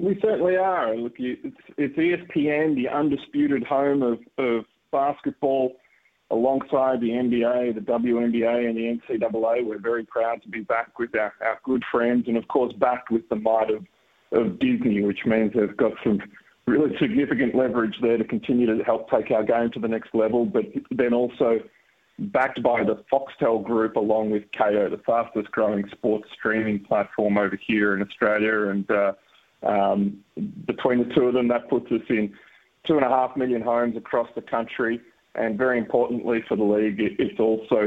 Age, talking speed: 20-39, 175 wpm